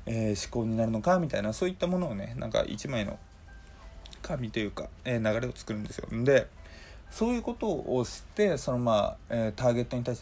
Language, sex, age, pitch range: Japanese, male, 20-39, 105-130 Hz